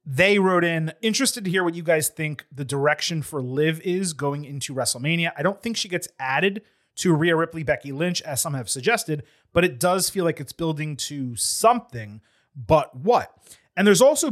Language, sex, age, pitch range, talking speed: English, male, 30-49, 145-195 Hz, 195 wpm